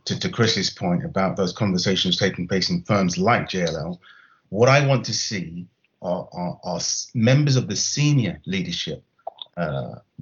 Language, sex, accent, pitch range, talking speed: English, male, British, 105-130 Hz, 160 wpm